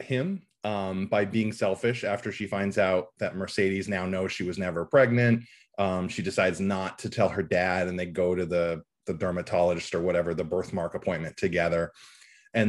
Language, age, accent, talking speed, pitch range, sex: English, 30-49, American, 185 wpm, 95-120 Hz, male